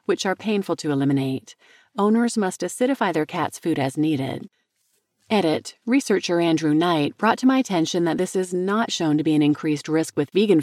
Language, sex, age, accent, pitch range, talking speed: English, female, 40-59, American, 150-215 Hz, 185 wpm